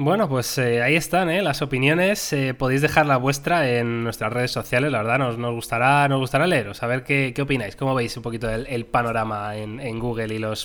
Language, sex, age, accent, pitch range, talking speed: Spanish, male, 20-39, Spanish, 120-145 Hz, 235 wpm